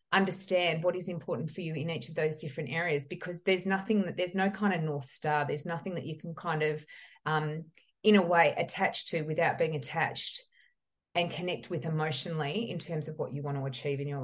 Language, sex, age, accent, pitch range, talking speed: English, female, 30-49, Australian, 155-200 Hz, 220 wpm